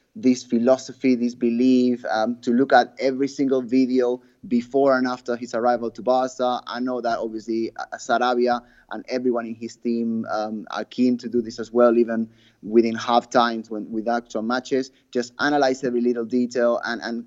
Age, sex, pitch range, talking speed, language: 20-39, male, 115-125 Hz, 175 wpm, English